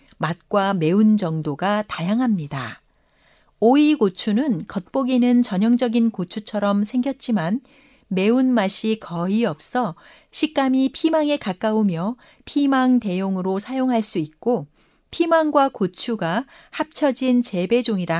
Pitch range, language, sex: 185-255 Hz, Korean, female